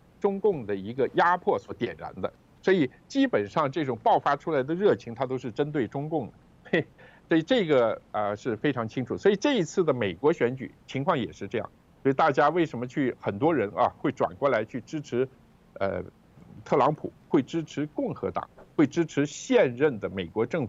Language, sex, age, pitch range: Chinese, male, 50-69, 115-160 Hz